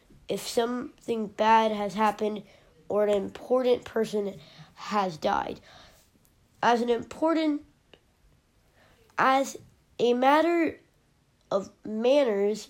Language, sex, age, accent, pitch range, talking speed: English, female, 20-39, American, 210-270 Hz, 90 wpm